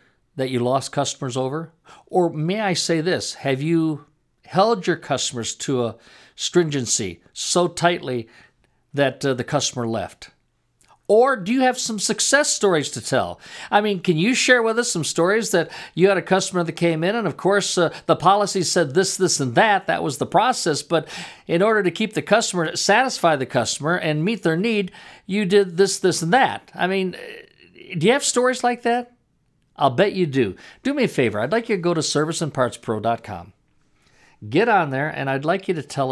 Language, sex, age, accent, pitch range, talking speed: English, male, 50-69, American, 135-200 Hz, 195 wpm